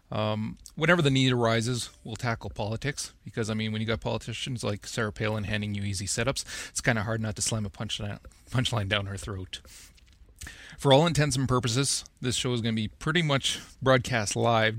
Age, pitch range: 30-49, 105-130 Hz